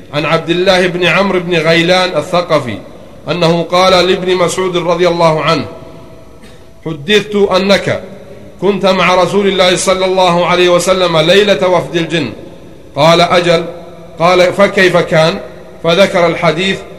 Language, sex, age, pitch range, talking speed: Arabic, male, 40-59, 160-180 Hz, 125 wpm